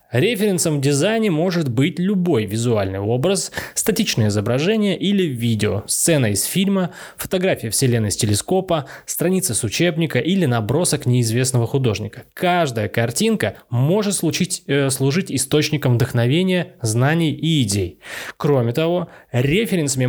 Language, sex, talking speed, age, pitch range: Russian, male, 115 wpm, 20-39, 115-165 Hz